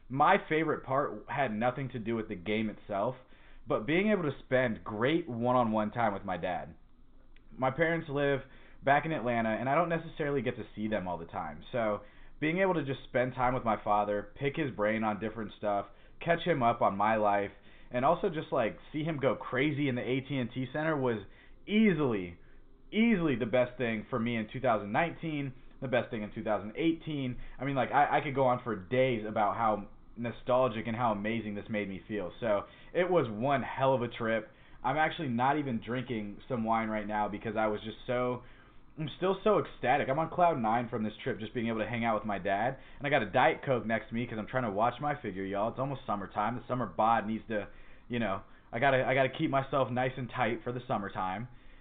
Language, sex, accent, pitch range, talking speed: English, male, American, 110-140 Hz, 220 wpm